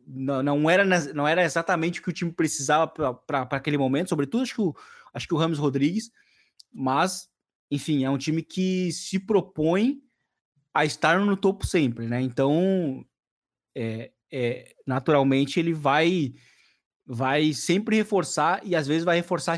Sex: male